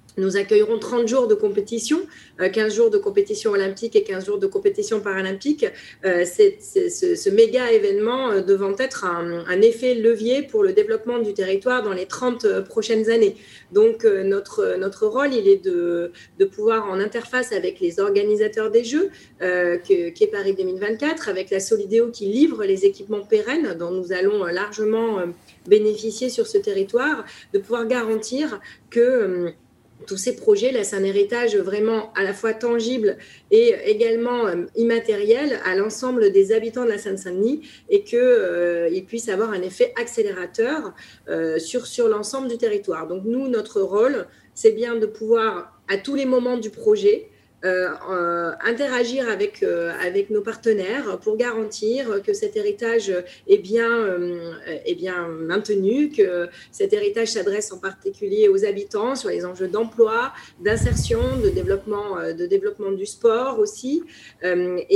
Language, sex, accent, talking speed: French, female, French, 155 wpm